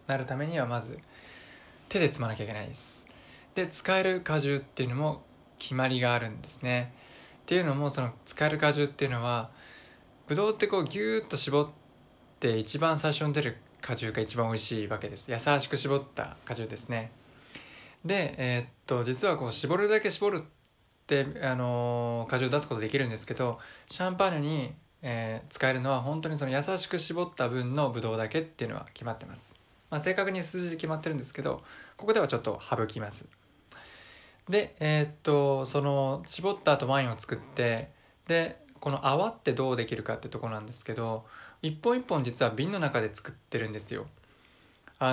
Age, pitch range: 20-39, 120-155 Hz